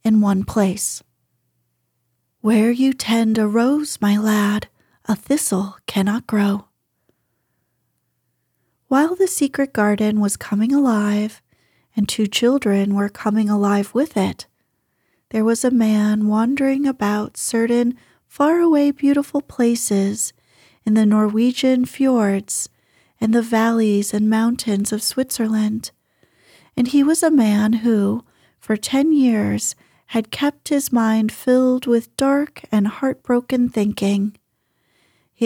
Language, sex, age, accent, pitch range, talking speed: English, female, 30-49, American, 210-255 Hz, 120 wpm